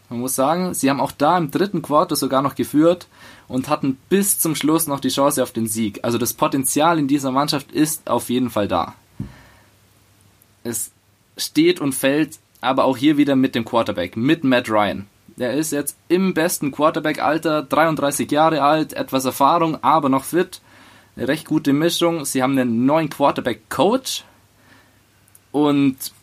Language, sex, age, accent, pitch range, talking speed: German, male, 20-39, German, 115-145 Hz, 165 wpm